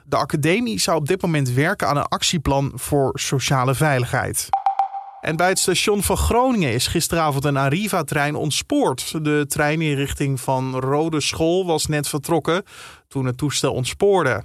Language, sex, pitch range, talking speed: Dutch, male, 135-175 Hz, 160 wpm